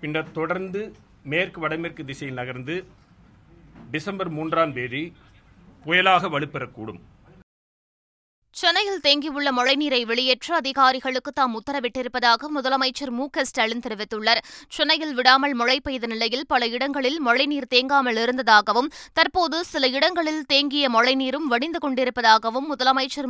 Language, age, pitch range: Tamil, 20-39, 225-275 Hz